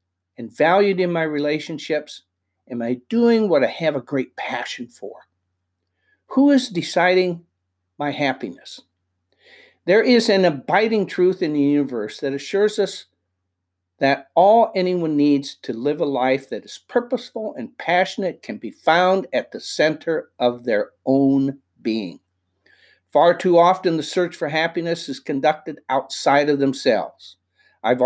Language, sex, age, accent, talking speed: English, male, 60-79, American, 145 wpm